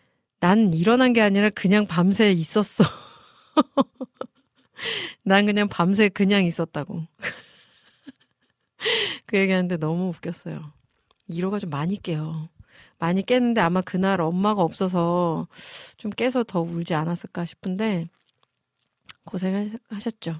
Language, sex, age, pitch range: Korean, female, 30-49, 170-225 Hz